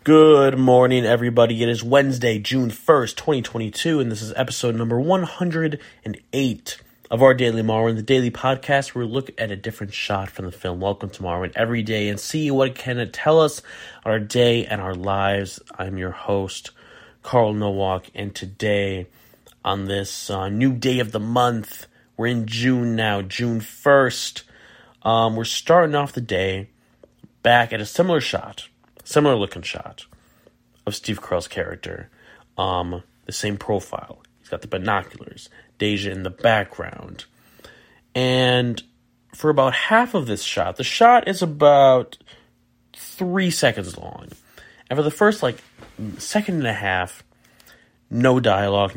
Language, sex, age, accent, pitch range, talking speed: English, male, 30-49, American, 100-130 Hz, 155 wpm